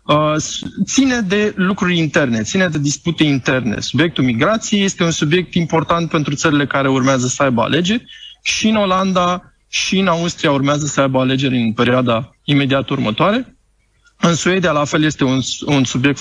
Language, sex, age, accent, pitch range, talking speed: Romanian, male, 20-39, native, 140-195 Hz, 160 wpm